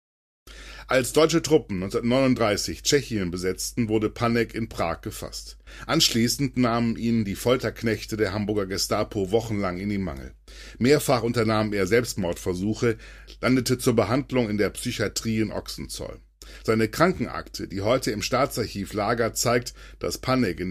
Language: German